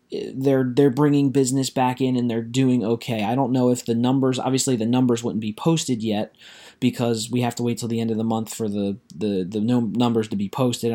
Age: 20-39